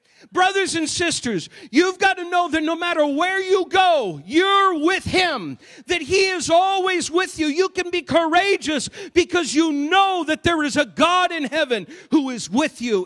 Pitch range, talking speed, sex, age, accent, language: 250-320 Hz, 185 wpm, male, 50-69, American, English